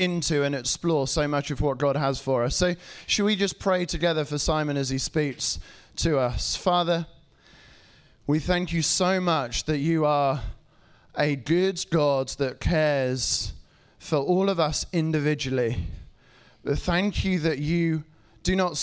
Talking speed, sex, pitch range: 155 wpm, male, 140-165 Hz